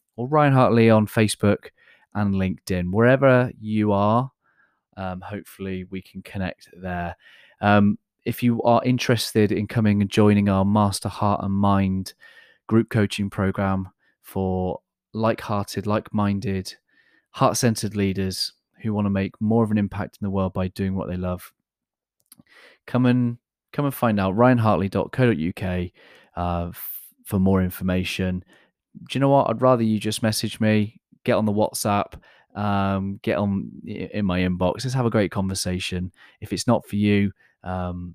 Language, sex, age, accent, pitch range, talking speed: English, male, 30-49, British, 95-115 Hz, 155 wpm